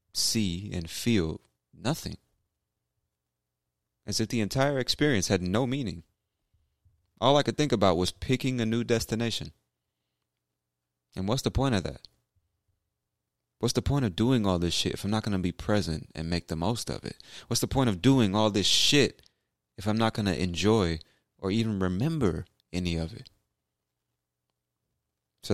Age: 30-49